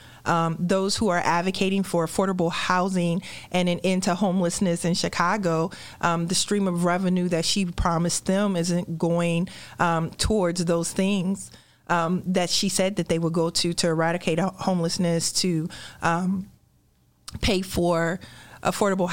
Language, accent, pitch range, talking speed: English, American, 175-225 Hz, 145 wpm